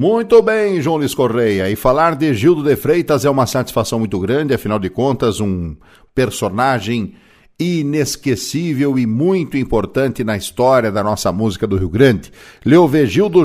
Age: 60-79